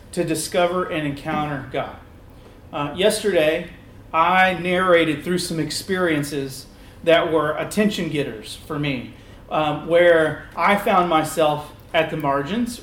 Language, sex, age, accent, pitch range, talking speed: English, male, 40-59, American, 140-185 Hz, 115 wpm